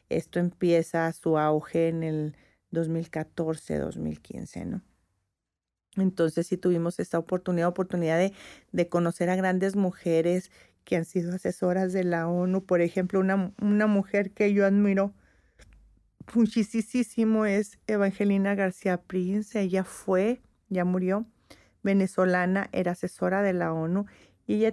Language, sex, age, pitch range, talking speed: Spanish, female, 40-59, 175-215 Hz, 130 wpm